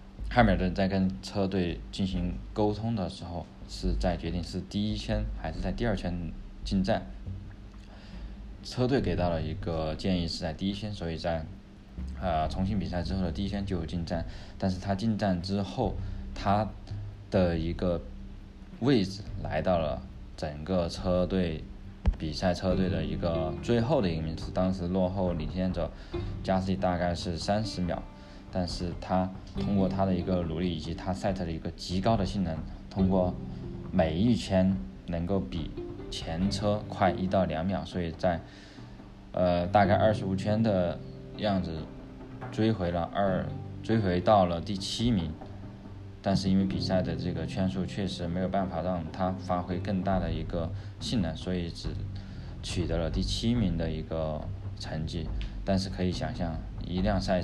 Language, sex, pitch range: Chinese, male, 85-100 Hz